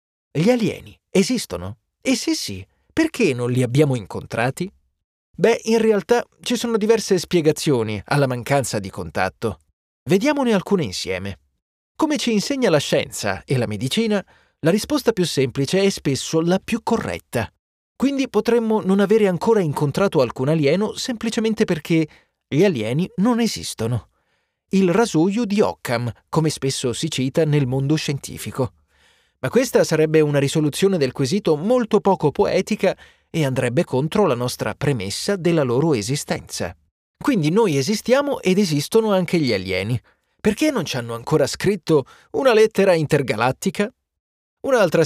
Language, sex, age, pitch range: Italian, male, 30-49, 130-215 Hz